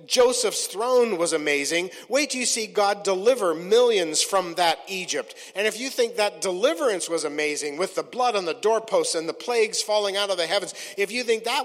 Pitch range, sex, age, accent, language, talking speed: 190-265 Hz, male, 50-69, American, English, 205 wpm